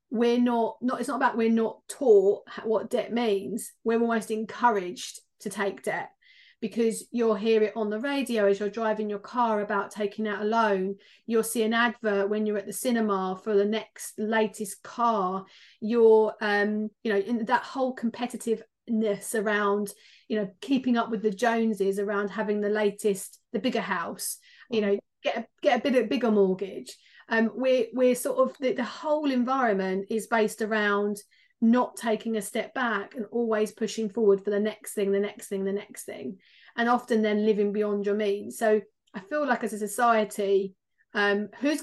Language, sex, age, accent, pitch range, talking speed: English, female, 40-59, British, 205-235 Hz, 185 wpm